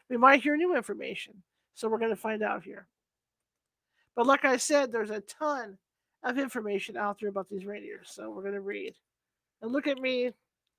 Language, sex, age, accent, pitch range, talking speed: English, male, 40-59, American, 220-295 Hz, 195 wpm